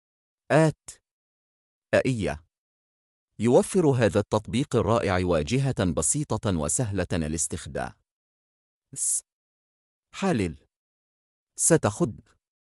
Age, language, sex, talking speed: 40-59, Arabic, male, 60 wpm